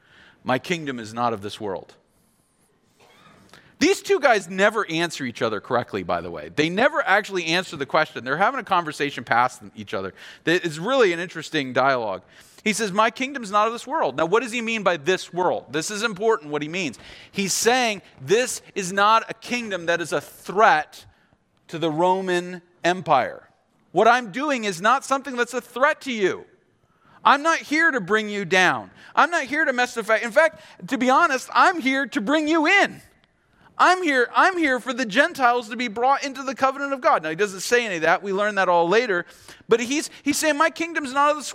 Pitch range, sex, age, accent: 180-280 Hz, male, 40-59, American